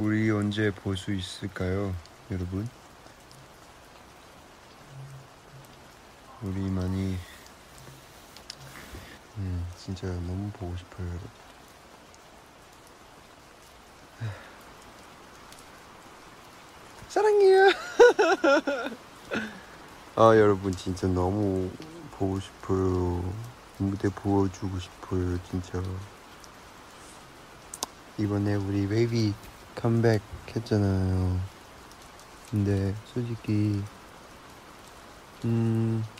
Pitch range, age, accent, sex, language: 95-110 Hz, 40-59, Korean, male, Chinese